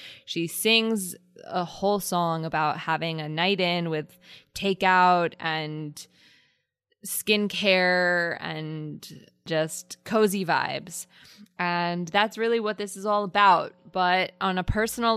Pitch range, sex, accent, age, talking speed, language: 155-185 Hz, female, American, 20-39, 120 wpm, English